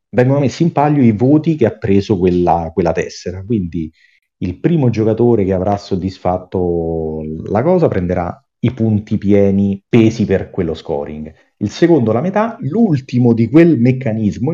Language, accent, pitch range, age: Italian, native, 90-125 Hz, 40-59